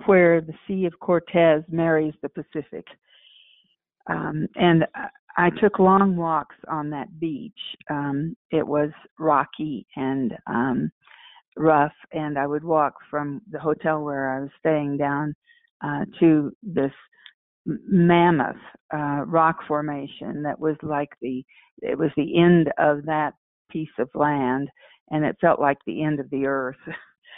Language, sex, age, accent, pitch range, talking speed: English, female, 50-69, American, 145-175 Hz, 145 wpm